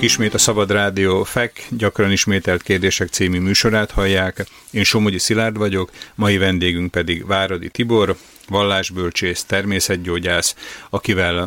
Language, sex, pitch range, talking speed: Slovak, male, 90-105 Hz, 120 wpm